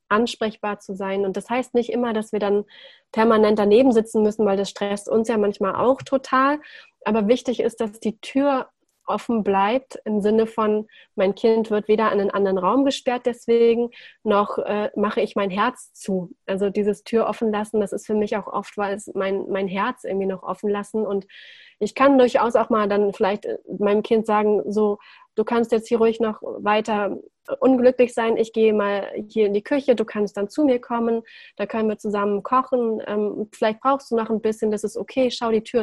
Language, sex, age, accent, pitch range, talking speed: German, female, 30-49, German, 200-230 Hz, 205 wpm